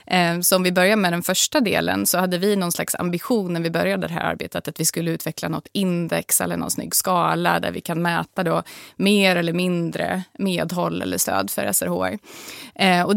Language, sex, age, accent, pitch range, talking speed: Swedish, female, 20-39, native, 170-205 Hz, 195 wpm